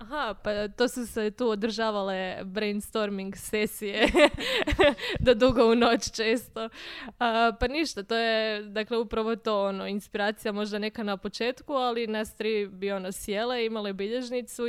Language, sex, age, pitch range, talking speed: Croatian, female, 20-39, 195-220 Hz, 145 wpm